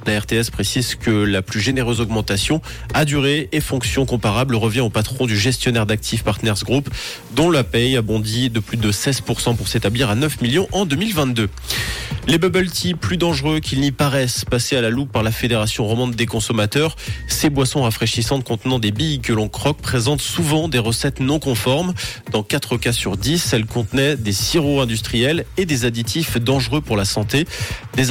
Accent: French